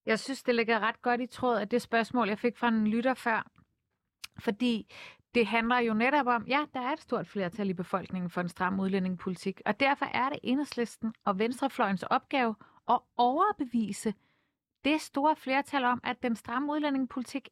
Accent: native